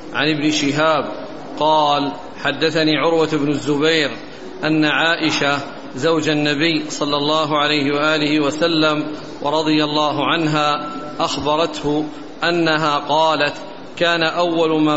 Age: 40-59